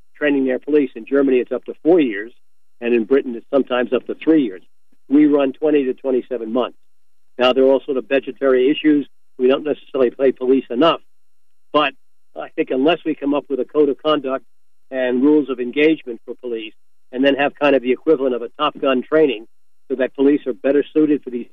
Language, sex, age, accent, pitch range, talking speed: English, male, 60-79, American, 125-150 Hz, 215 wpm